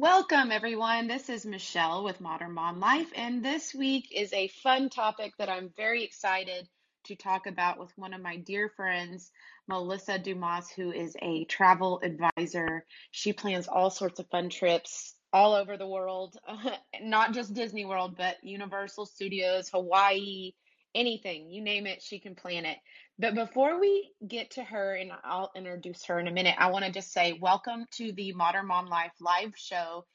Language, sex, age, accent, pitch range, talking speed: English, female, 30-49, American, 180-215 Hz, 175 wpm